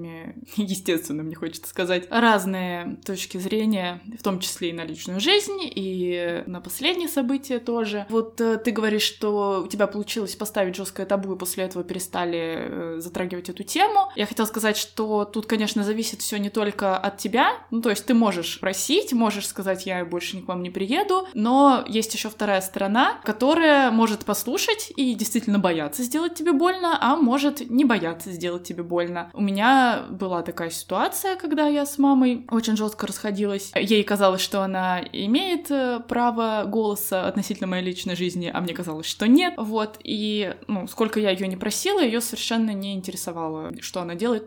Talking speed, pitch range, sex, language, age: 170 wpm, 185-245 Hz, female, Russian, 20-39